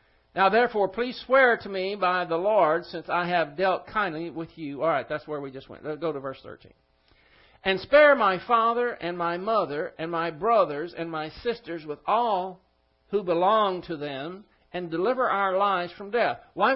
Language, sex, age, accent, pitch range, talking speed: English, male, 60-79, American, 165-220 Hz, 190 wpm